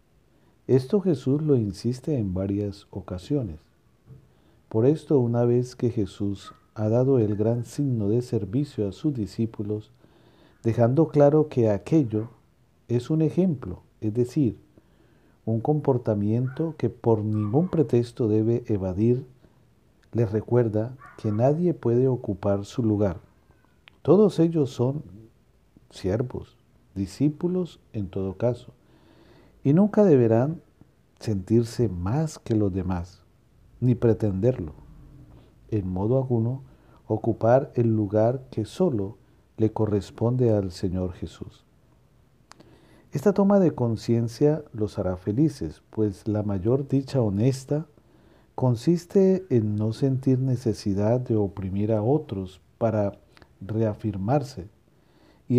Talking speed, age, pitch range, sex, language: 110 wpm, 50-69, 105-135 Hz, male, English